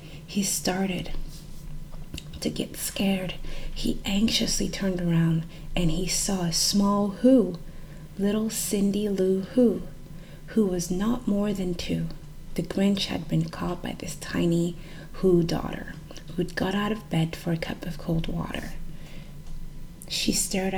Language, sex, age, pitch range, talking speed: English, female, 30-49, 165-195 Hz, 140 wpm